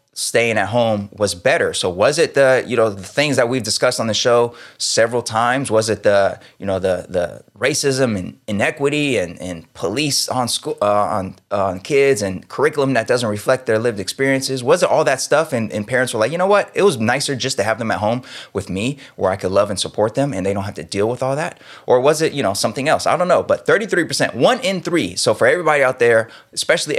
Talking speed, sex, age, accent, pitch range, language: 250 wpm, male, 20-39, American, 100-135 Hz, English